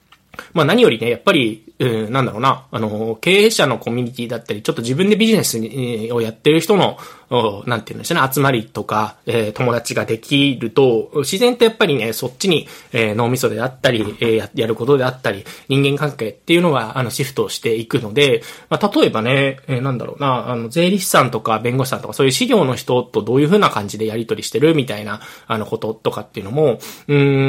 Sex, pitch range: male, 115-150 Hz